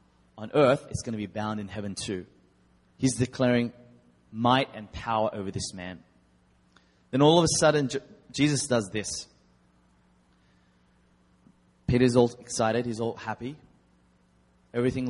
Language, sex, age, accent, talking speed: English, male, 20-39, Australian, 130 wpm